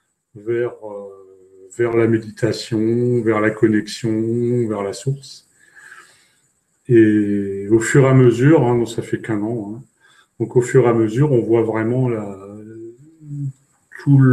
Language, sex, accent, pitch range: French, male, French, 115-140 Hz